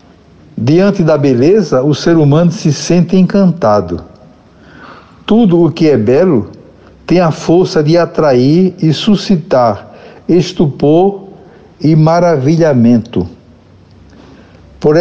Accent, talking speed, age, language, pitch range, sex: Brazilian, 100 wpm, 60-79, Portuguese, 140-180 Hz, male